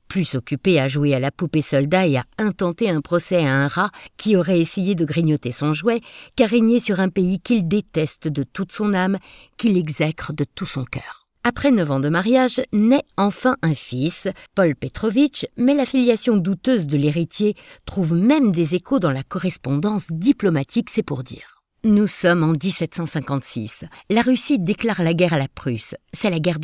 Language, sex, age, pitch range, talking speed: French, female, 60-79, 145-215 Hz, 185 wpm